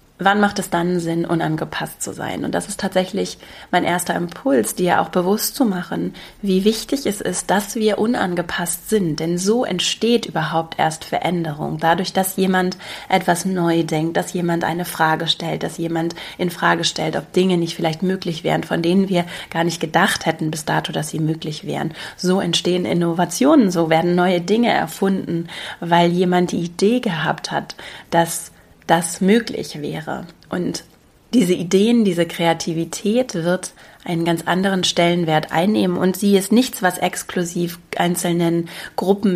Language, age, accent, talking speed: German, 30-49, German, 160 wpm